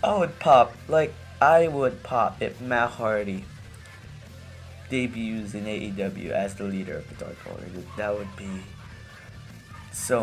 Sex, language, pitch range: male, English, 105-130 Hz